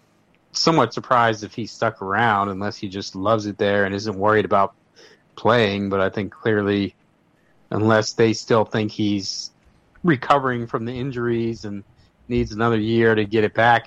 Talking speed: 165 wpm